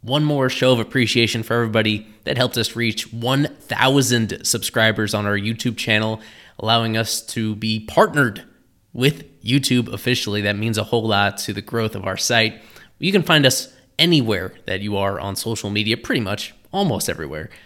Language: English